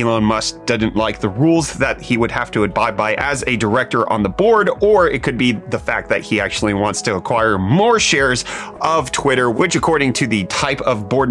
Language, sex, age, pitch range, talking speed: English, male, 30-49, 105-150 Hz, 225 wpm